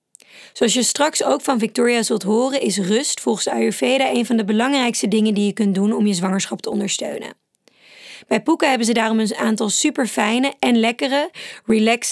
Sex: female